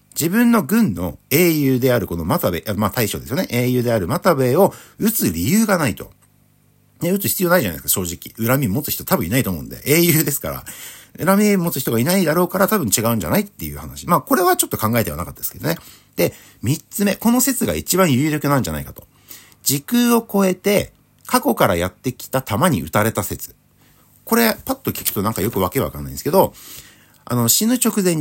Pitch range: 110-175 Hz